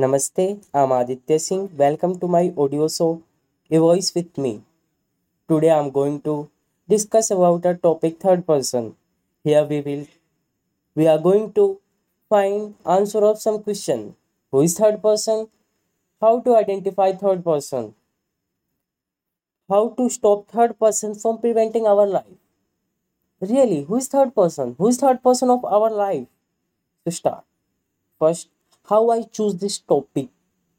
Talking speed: 140 wpm